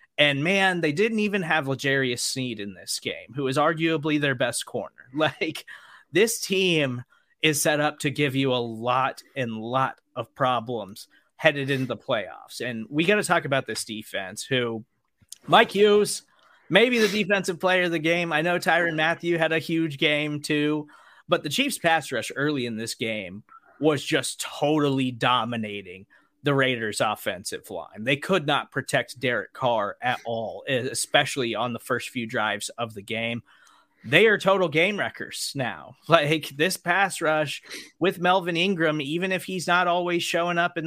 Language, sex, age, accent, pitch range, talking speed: English, male, 30-49, American, 135-170 Hz, 175 wpm